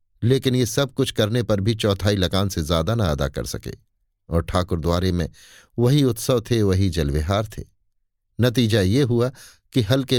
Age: 50-69